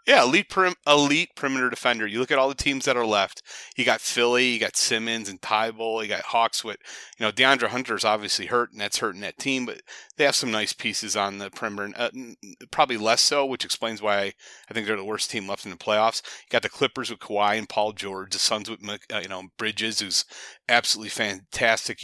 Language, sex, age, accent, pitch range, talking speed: English, male, 30-49, American, 105-130 Hz, 225 wpm